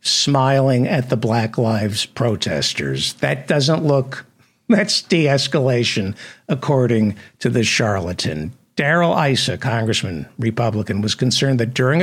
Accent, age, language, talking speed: American, 60-79, English, 115 wpm